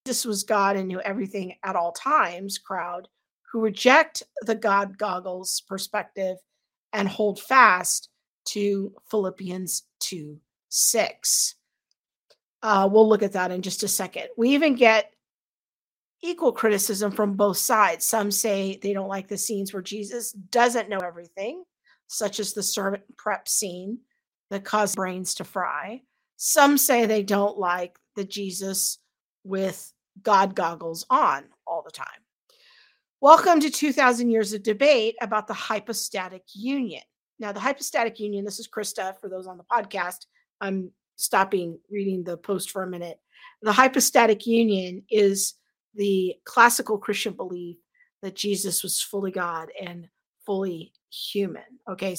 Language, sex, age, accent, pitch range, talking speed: English, female, 50-69, American, 190-230 Hz, 140 wpm